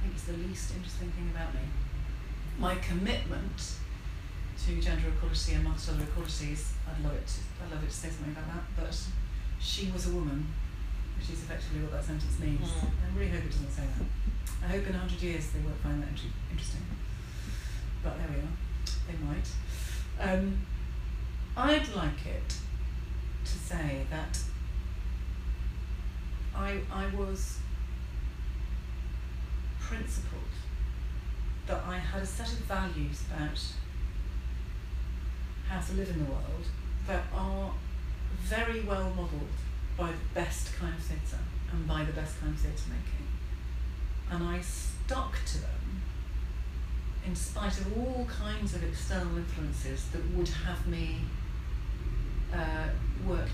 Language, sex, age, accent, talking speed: English, female, 40-59, British, 145 wpm